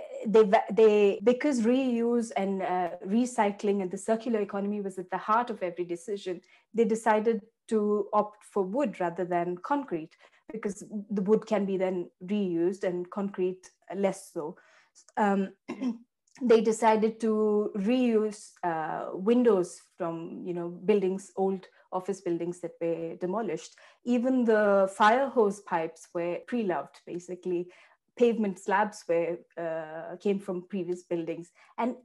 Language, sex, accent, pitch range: English, female, Indian, 180-225 Hz